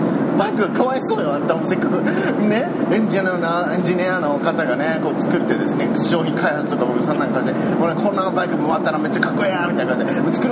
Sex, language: male, Japanese